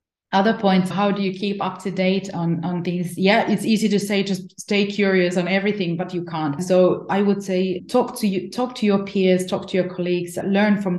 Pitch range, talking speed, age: 180-205 Hz, 230 wpm, 20-39